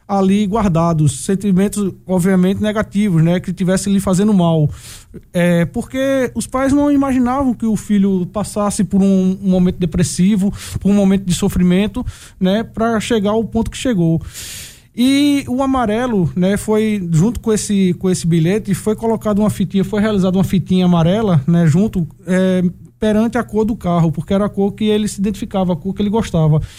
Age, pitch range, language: 20-39, 180-215 Hz, Portuguese